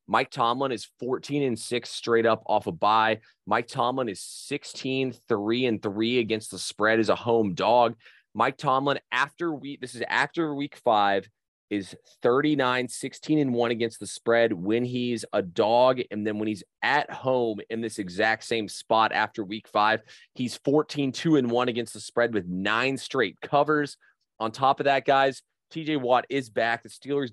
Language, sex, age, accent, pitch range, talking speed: English, male, 20-39, American, 110-125 Hz, 180 wpm